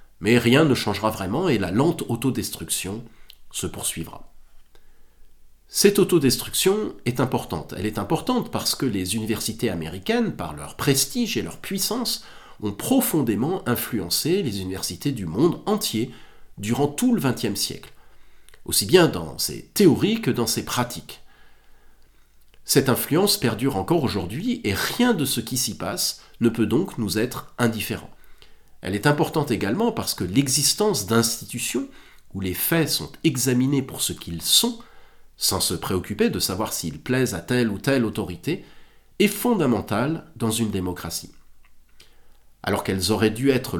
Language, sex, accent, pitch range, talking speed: French, male, French, 105-160 Hz, 150 wpm